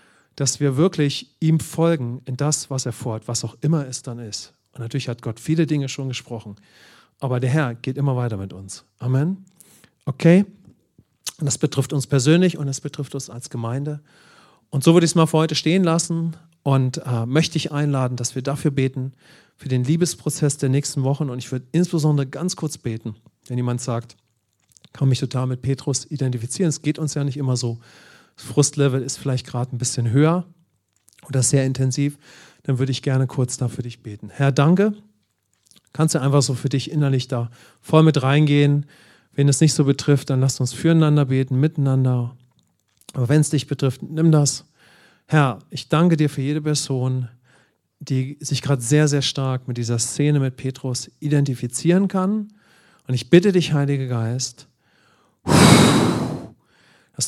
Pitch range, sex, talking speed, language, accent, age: 125-155 Hz, male, 175 wpm, English, German, 40-59